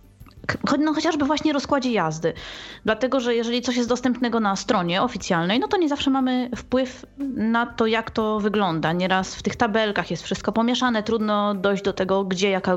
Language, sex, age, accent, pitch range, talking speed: Polish, female, 20-39, native, 180-225 Hz, 175 wpm